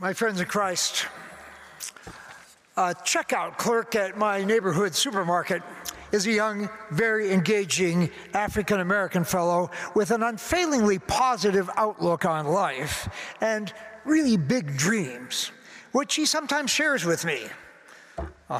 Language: English